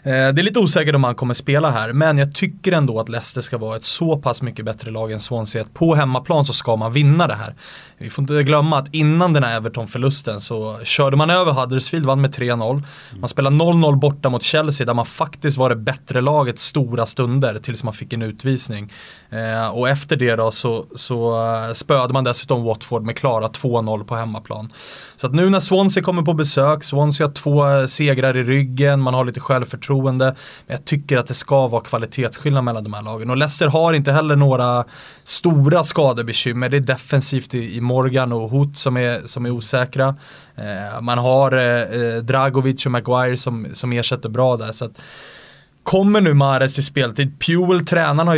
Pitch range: 120-145 Hz